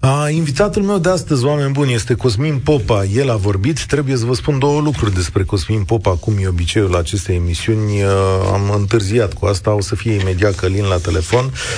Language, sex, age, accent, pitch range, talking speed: Romanian, male, 40-59, native, 100-145 Hz, 200 wpm